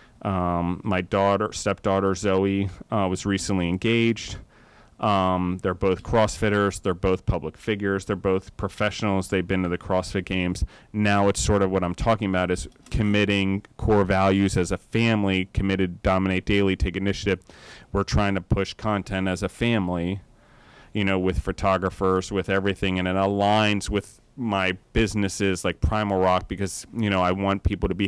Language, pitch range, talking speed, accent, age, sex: English, 90-100 Hz, 165 wpm, American, 30-49, male